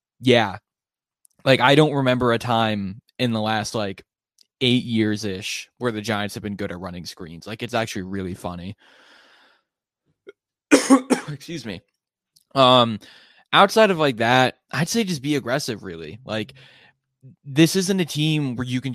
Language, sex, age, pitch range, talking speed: English, male, 20-39, 105-125 Hz, 150 wpm